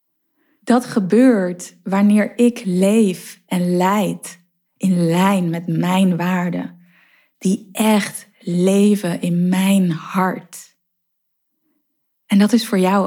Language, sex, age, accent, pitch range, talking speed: Dutch, female, 20-39, Dutch, 185-240 Hz, 105 wpm